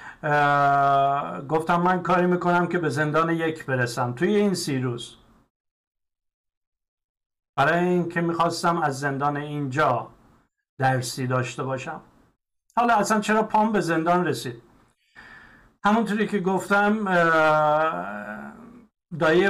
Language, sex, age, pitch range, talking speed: Persian, male, 50-69, 155-195 Hz, 110 wpm